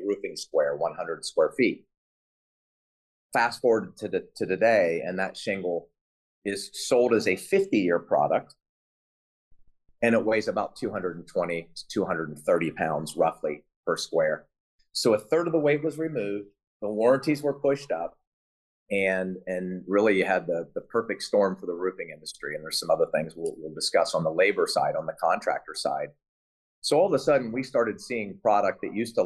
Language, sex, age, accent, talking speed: English, male, 30-49, American, 170 wpm